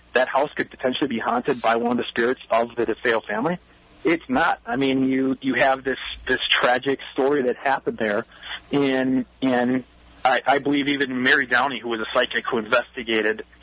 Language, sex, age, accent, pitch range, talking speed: English, male, 40-59, American, 120-140 Hz, 190 wpm